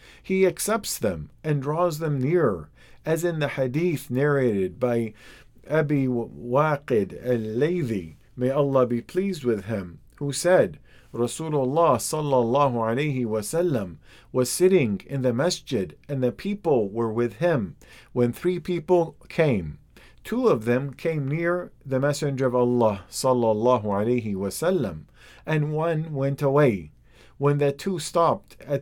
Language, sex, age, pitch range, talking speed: English, male, 50-69, 120-160 Hz, 135 wpm